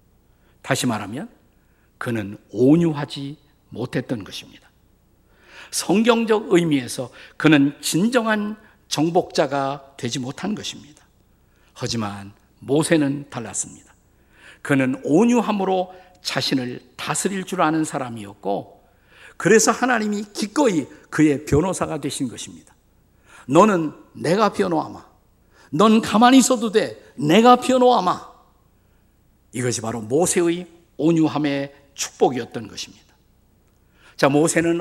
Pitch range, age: 135-195 Hz, 50-69